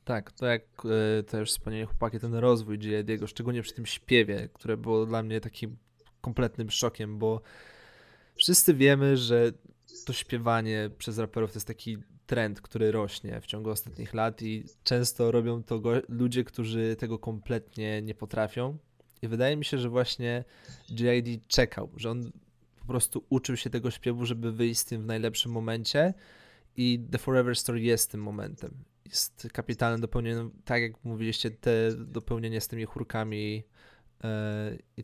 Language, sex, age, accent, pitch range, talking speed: Polish, male, 20-39, native, 110-120 Hz, 160 wpm